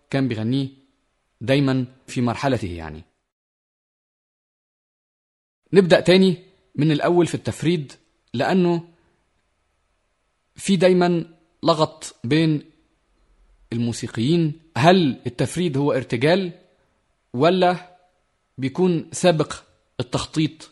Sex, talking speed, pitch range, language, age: male, 75 wpm, 125-180 Hz, Arabic, 30-49